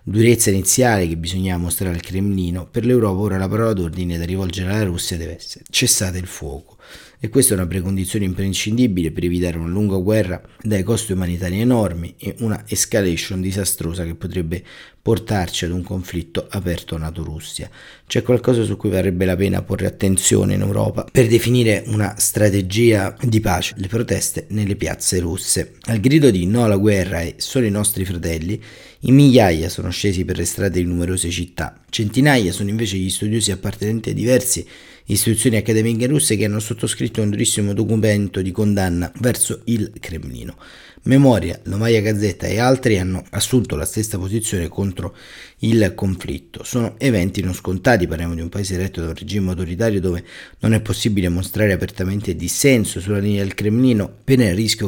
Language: Italian